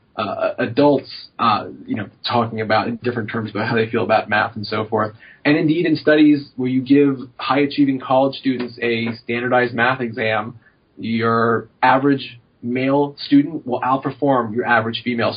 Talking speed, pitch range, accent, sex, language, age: 165 wpm, 115-145 Hz, American, male, English, 30-49